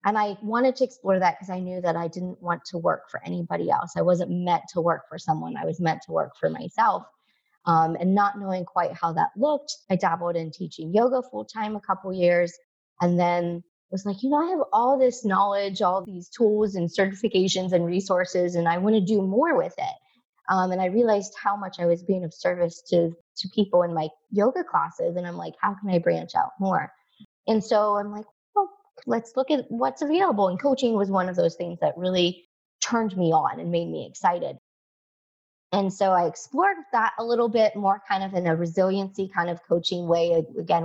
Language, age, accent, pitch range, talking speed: English, 20-39, American, 175-215 Hz, 215 wpm